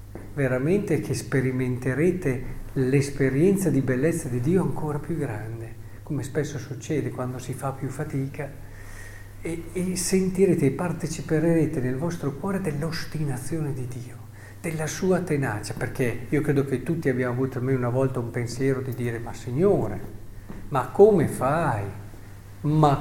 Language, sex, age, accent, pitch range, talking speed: Italian, male, 50-69, native, 115-150 Hz, 140 wpm